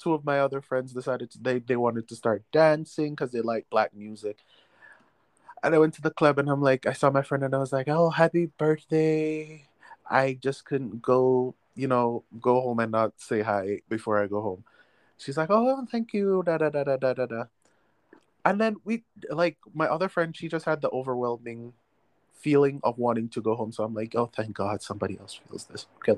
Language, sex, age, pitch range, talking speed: English, male, 20-39, 125-160 Hz, 215 wpm